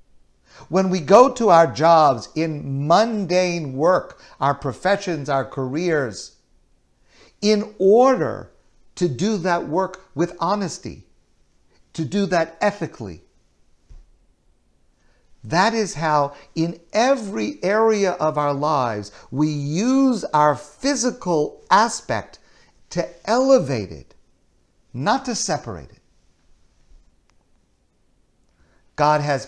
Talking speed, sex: 100 wpm, male